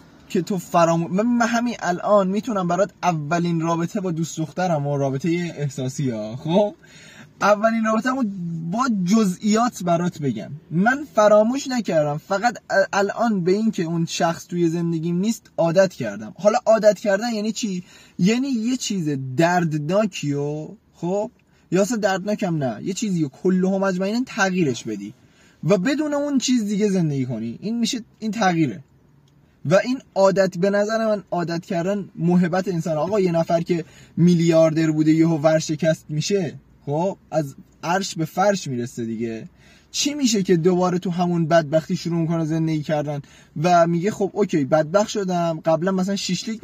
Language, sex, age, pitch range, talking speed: Persian, male, 20-39, 160-210 Hz, 150 wpm